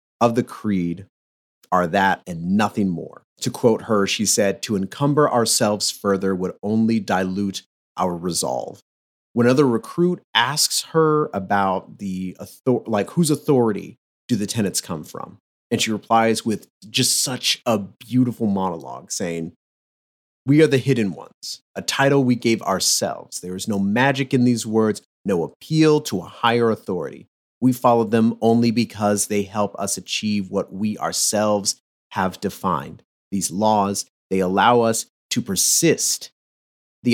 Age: 30-49